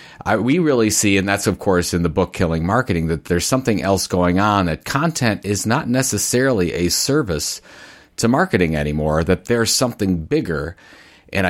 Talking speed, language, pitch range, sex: 170 wpm, English, 90-125 Hz, male